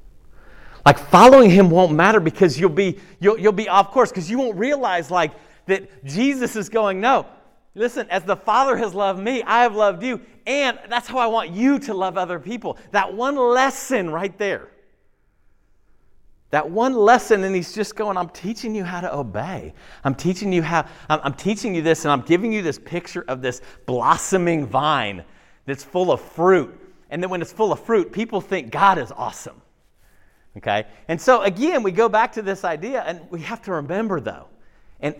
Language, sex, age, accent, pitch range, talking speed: English, male, 40-59, American, 145-220 Hz, 195 wpm